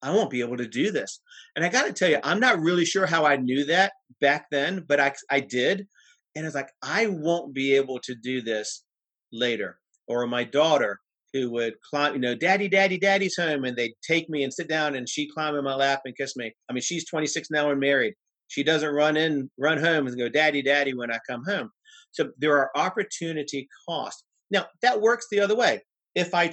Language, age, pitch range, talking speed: English, 40-59, 125-165 Hz, 225 wpm